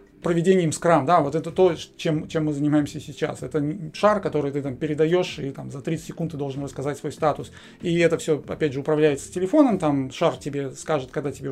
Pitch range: 145-175 Hz